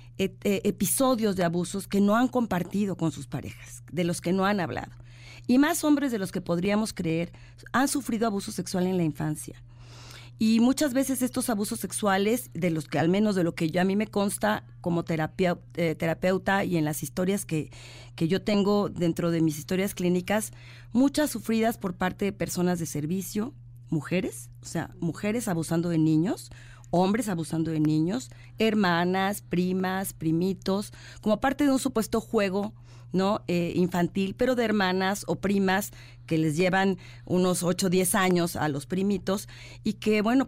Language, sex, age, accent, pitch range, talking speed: Spanish, female, 40-59, Mexican, 160-215 Hz, 175 wpm